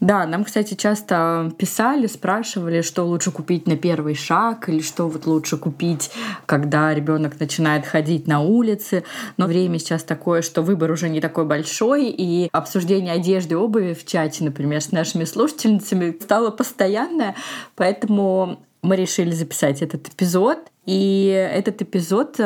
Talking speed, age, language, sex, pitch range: 145 wpm, 20-39, Russian, female, 170-210 Hz